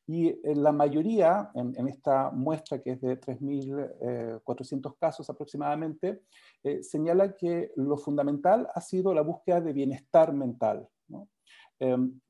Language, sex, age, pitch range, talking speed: Spanish, male, 40-59, 135-170 Hz, 130 wpm